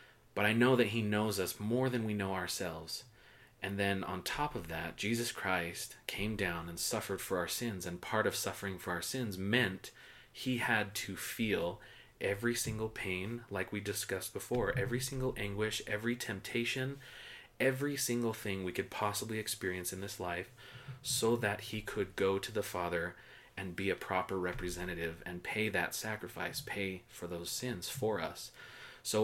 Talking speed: 175 wpm